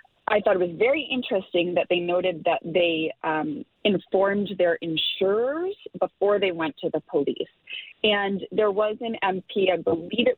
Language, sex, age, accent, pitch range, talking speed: English, female, 30-49, American, 170-220 Hz, 170 wpm